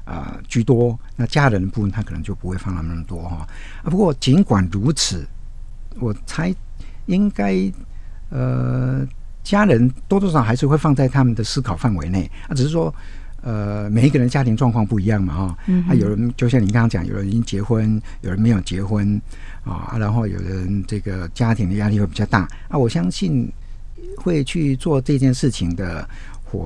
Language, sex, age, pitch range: Chinese, male, 60-79, 95-130 Hz